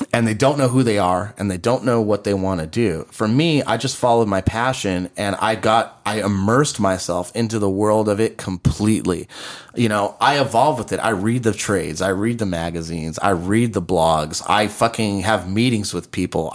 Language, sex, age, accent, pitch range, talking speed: English, male, 30-49, American, 95-120 Hz, 215 wpm